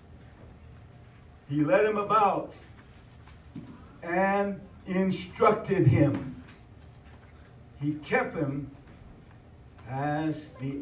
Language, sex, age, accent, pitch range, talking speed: English, male, 60-79, American, 115-145 Hz, 65 wpm